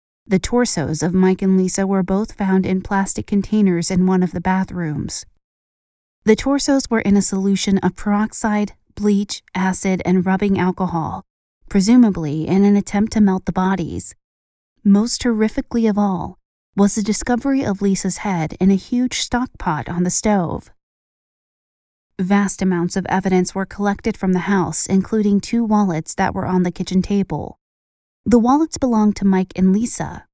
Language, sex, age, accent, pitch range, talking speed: English, female, 30-49, American, 180-210 Hz, 160 wpm